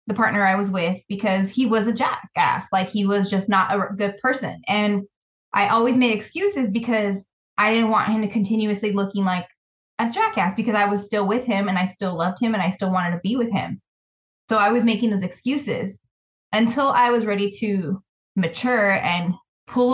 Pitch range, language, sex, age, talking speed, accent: 195-230 Hz, English, female, 20-39, 200 wpm, American